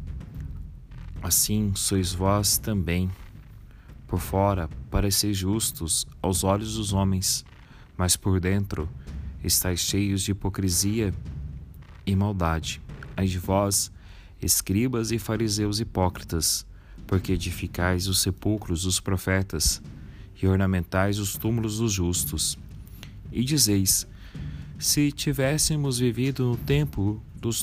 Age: 30-49